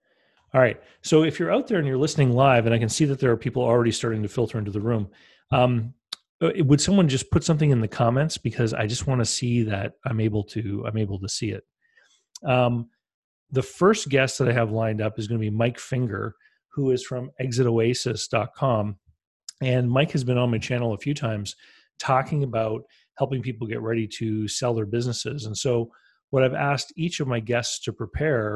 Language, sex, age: English, male, 40-59